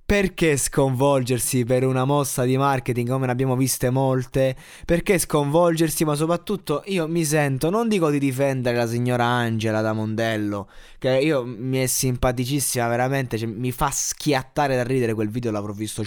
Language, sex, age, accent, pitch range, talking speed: Italian, male, 20-39, native, 115-155 Hz, 160 wpm